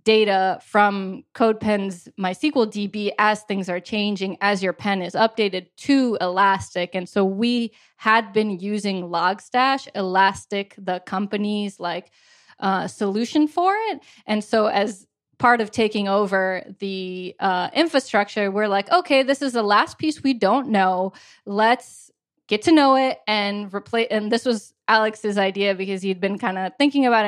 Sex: female